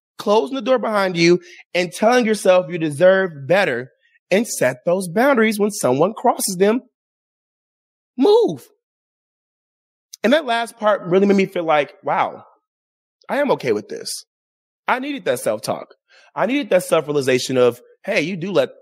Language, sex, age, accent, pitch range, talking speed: English, male, 30-49, American, 170-275 Hz, 155 wpm